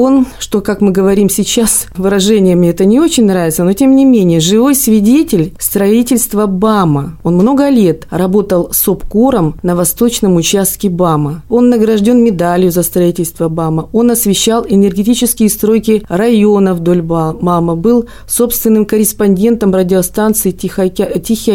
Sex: female